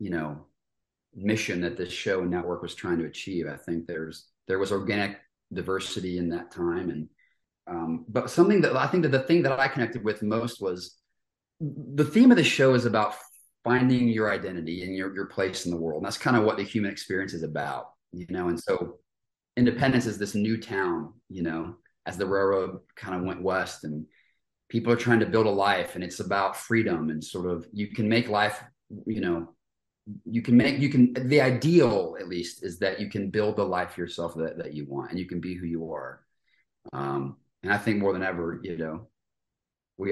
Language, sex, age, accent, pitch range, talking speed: English, male, 30-49, American, 85-115 Hz, 210 wpm